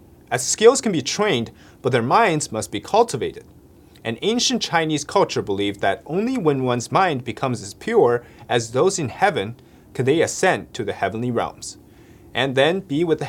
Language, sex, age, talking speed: English, male, 30-49, 180 wpm